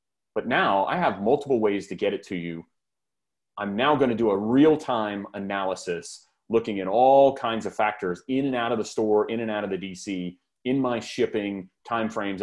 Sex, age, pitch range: male, 30-49, 95-125 Hz